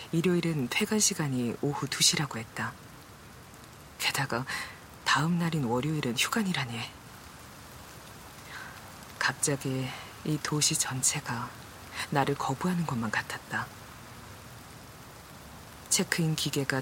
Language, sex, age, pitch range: Korean, female, 40-59, 115-150 Hz